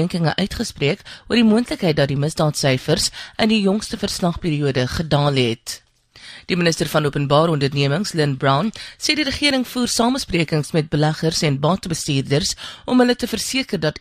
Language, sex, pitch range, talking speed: English, female, 145-205 Hz, 150 wpm